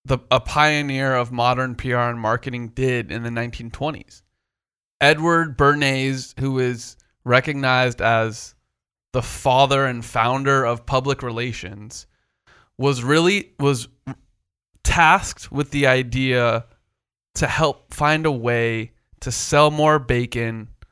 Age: 20-39